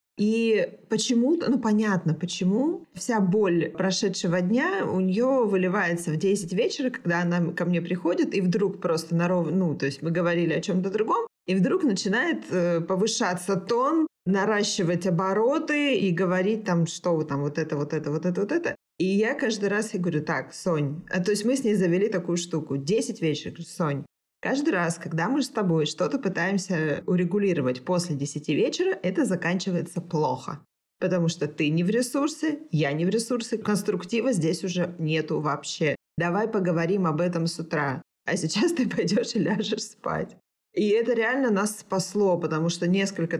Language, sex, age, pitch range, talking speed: Russian, female, 20-39, 165-210 Hz, 170 wpm